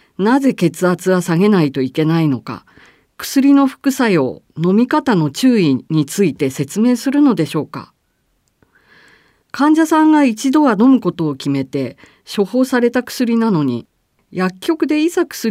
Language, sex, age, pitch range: Japanese, female, 40-59, 165-260 Hz